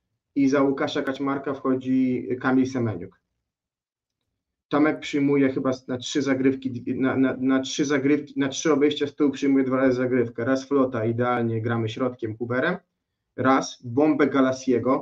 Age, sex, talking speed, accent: 30-49, male, 145 wpm, native